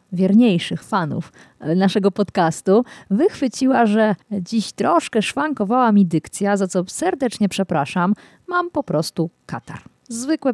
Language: Polish